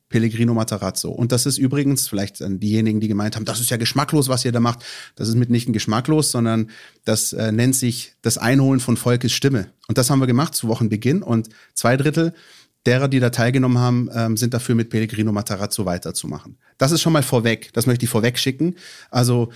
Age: 30-49